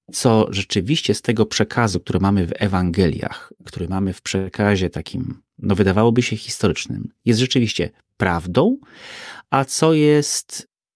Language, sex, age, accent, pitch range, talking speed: Polish, male, 30-49, native, 95-120 Hz, 130 wpm